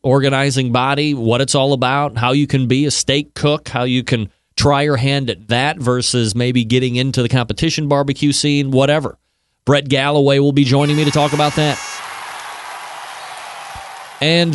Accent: American